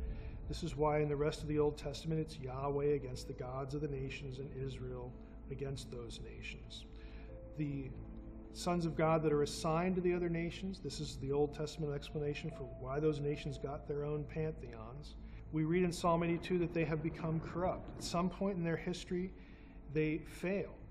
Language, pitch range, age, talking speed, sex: English, 130-160 Hz, 40-59, 190 wpm, male